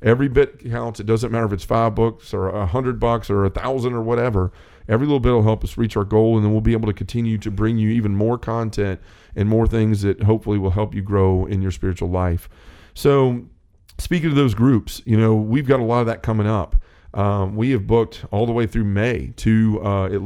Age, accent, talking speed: 40-59, American, 235 wpm